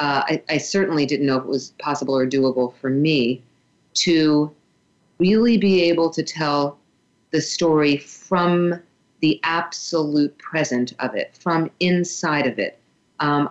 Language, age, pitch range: English, 40-59, 135-160 Hz